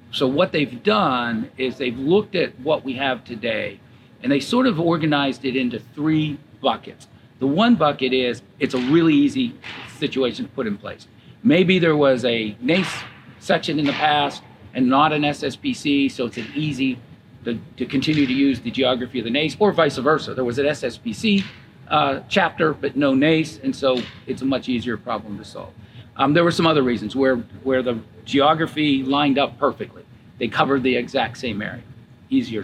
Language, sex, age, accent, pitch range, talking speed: English, male, 50-69, American, 120-155 Hz, 185 wpm